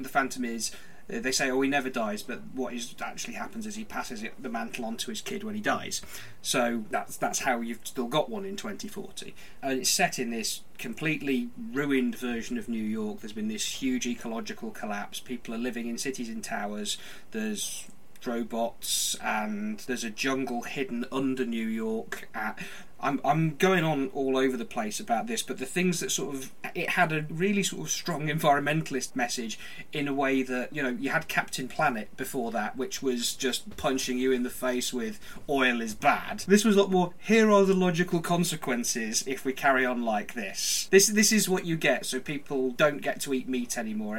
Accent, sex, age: British, male, 30-49